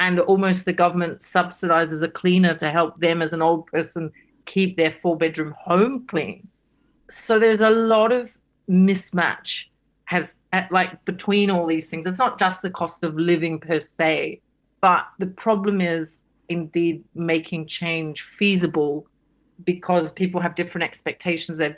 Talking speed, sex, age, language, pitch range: 155 wpm, female, 40-59, English, 160-185 Hz